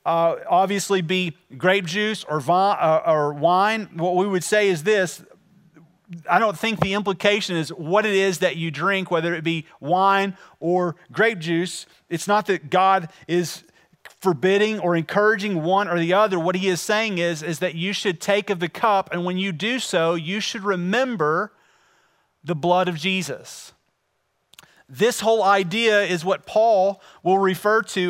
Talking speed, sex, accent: 170 wpm, male, American